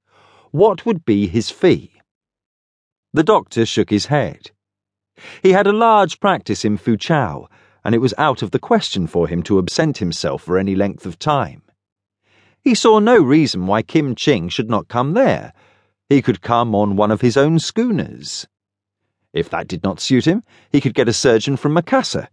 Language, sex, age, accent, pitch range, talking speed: English, male, 40-59, British, 100-155 Hz, 180 wpm